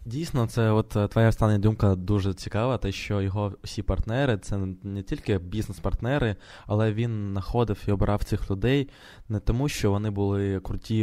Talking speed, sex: 165 wpm, male